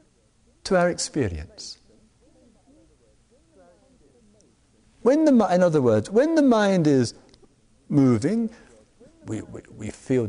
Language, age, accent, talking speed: English, 50-69, British, 95 wpm